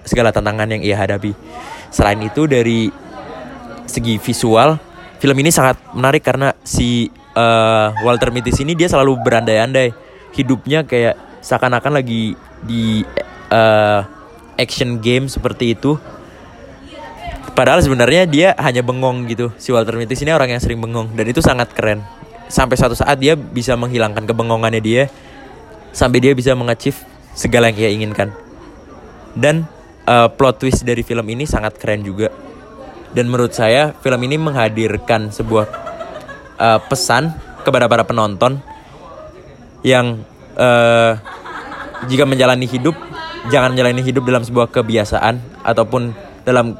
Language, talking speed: Indonesian, 130 wpm